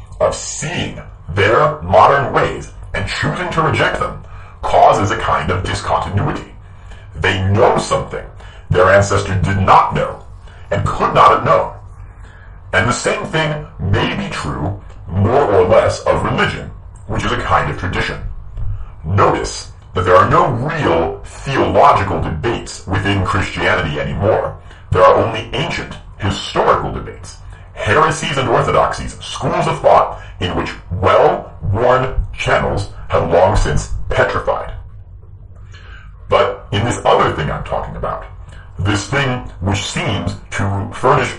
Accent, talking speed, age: American, 130 wpm, 40-59